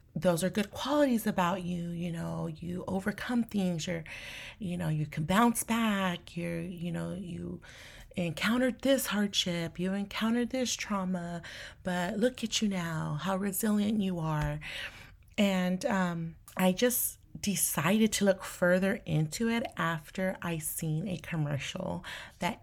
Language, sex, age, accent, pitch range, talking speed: English, female, 30-49, American, 165-210 Hz, 145 wpm